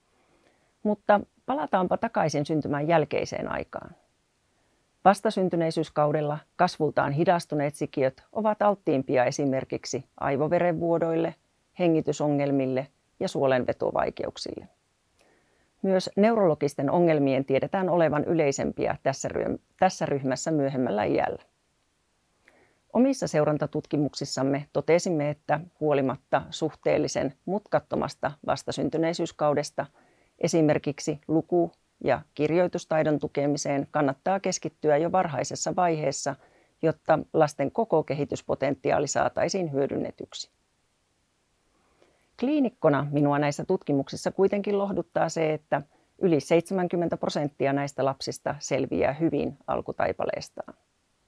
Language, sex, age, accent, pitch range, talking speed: Finnish, female, 40-59, native, 145-175 Hz, 80 wpm